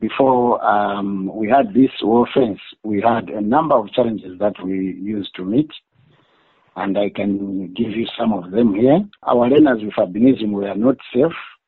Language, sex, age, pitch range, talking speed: English, male, 50-69, 105-130 Hz, 175 wpm